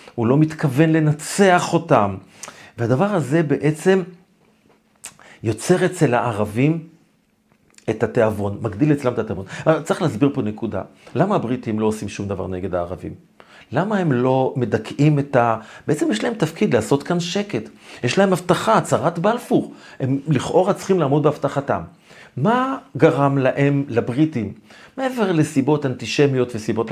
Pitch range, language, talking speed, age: 110-160 Hz, Hebrew, 135 wpm, 40-59